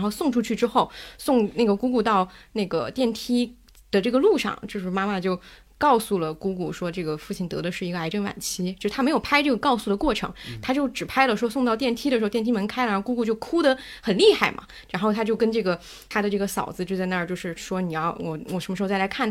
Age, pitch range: 20-39, 190-260 Hz